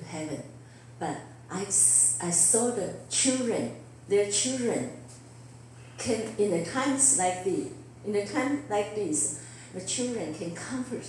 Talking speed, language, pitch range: 130 wpm, English, 125-205 Hz